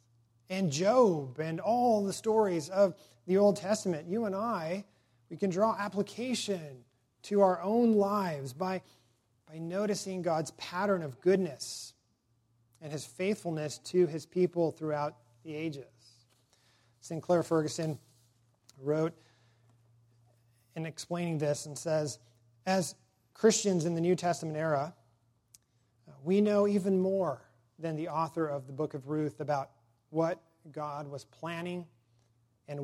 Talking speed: 130 wpm